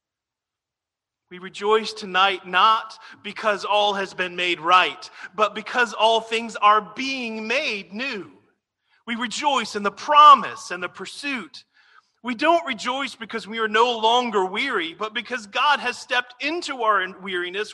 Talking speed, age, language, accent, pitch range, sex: 145 wpm, 40-59, English, American, 185-235 Hz, male